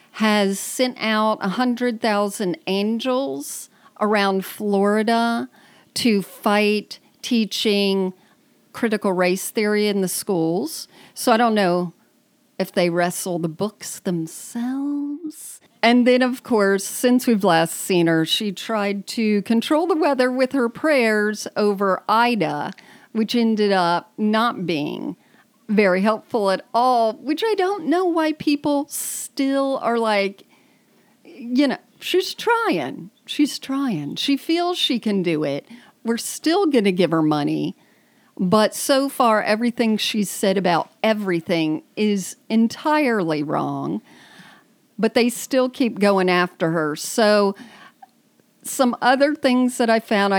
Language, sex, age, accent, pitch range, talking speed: English, female, 40-59, American, 195-255 Hz, 130 wpm